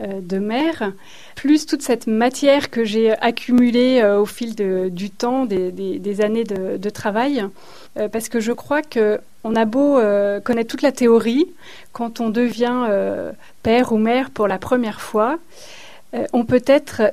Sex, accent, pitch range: female, French, 220-265 Hz